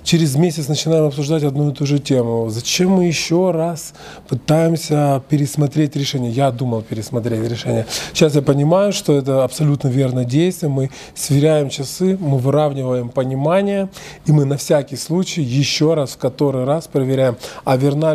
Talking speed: 155 wpm